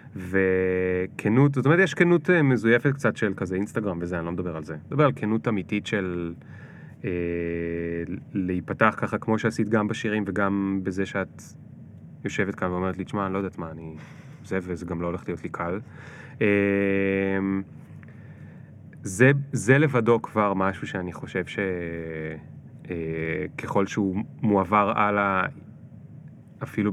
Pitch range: 90-120 Hz